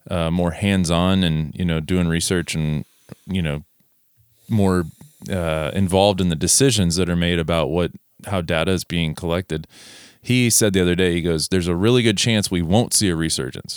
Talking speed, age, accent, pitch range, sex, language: 190 wpm, 20-39, American, 90-110 Hz, male, English